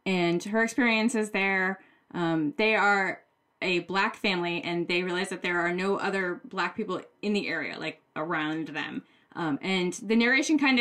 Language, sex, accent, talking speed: English, female, American, 170 wpm